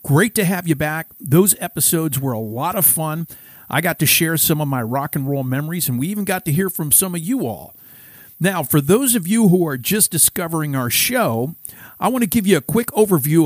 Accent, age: American, 50-69